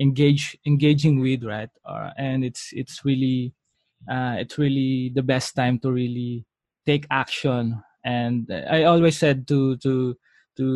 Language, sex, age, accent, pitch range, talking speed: English, male, 20-39, Filipino, 130-150 Hz, 145 wpm